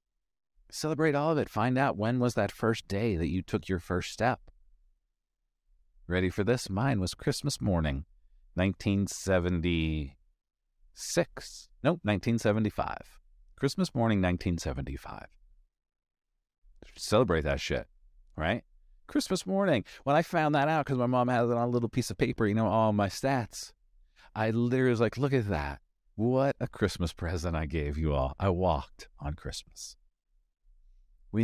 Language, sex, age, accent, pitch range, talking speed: English, male, 40-59, American, 80-115 Hz, 145 wpm